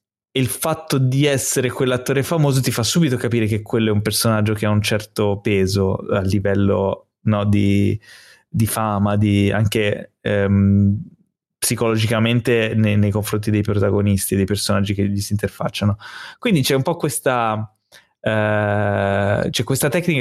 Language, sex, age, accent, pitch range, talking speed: Italian, male, 20-39, native, 100-125 Hz, 150 wpm